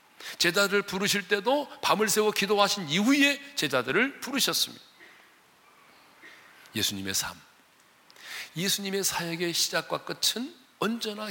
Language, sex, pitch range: Korean, male, 135-220 Hz